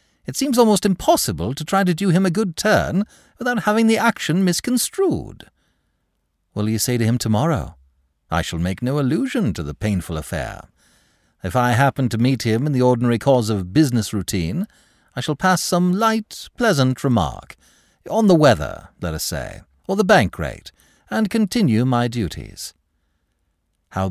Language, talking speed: English, 165 wpm